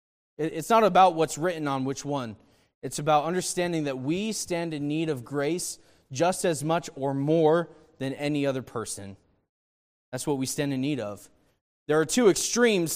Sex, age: male, 20-39